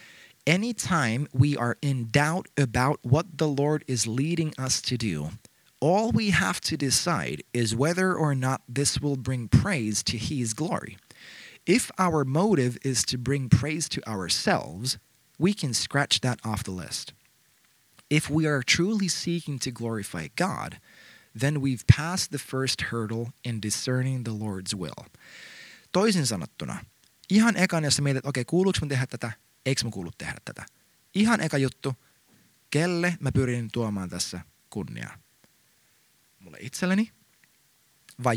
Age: 20-39